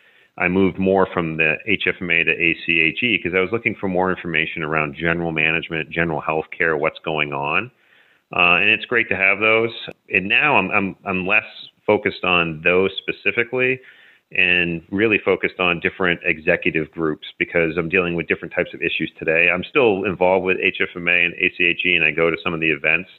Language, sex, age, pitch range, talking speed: English, male, 40-59, 80-90 Hz, 185 wpm